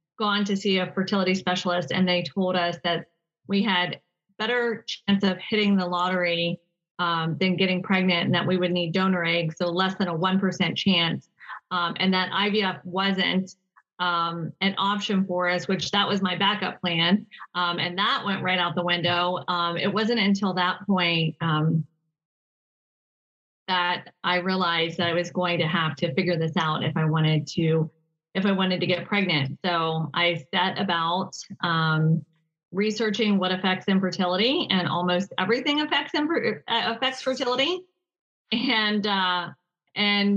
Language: English